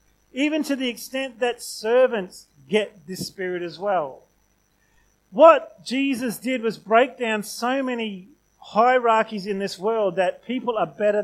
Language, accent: English, Australian